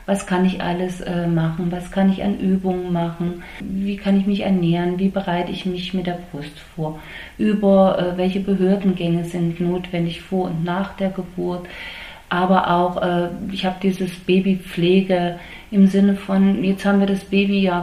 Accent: German